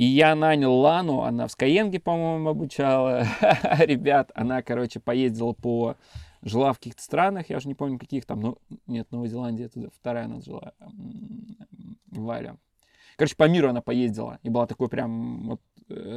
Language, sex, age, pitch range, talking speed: Russian, male, 20-39, 120-145 Hz, 150 wpm